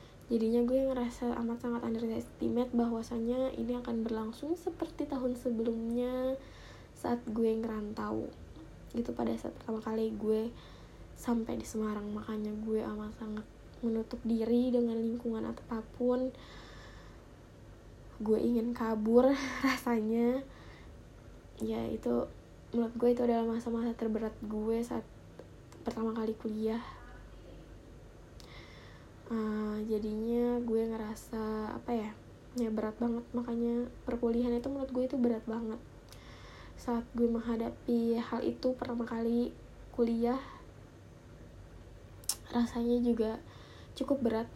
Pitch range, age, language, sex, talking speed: 215-240 Hz, 10-29, Indonesian, female, 110 wpm